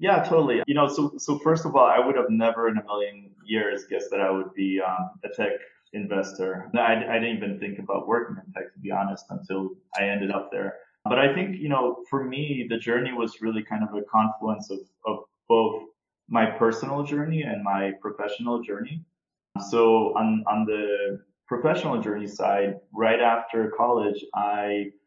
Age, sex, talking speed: 20-39, male, 190 wpm